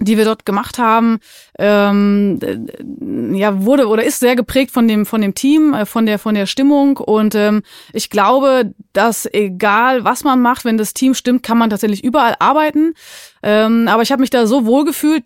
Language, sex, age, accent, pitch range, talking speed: German, female, 20-39, German, 210-255 Hz, 200 wpm